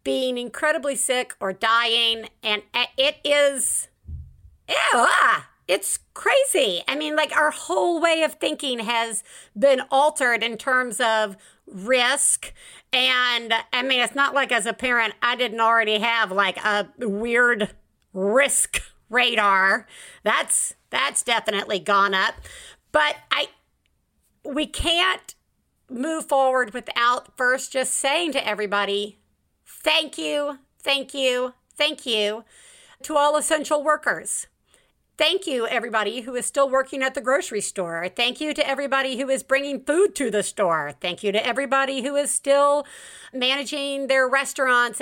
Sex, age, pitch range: female, 50-69, 230-285 Hz